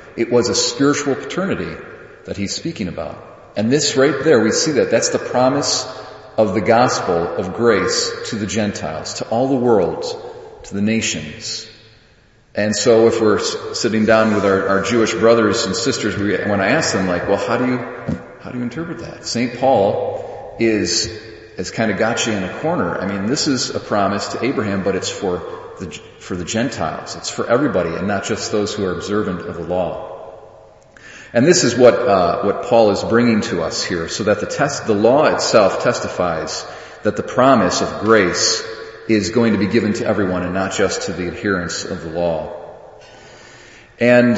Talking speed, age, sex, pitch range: 195 wpm, 40-59, male, 100-125 Hz